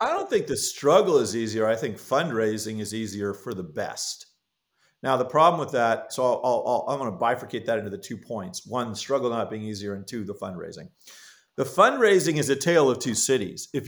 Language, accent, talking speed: English, American, 210 wpm